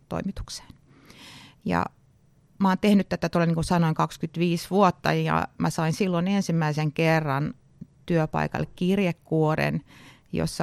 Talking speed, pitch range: 100 wpm, 160-200 Hz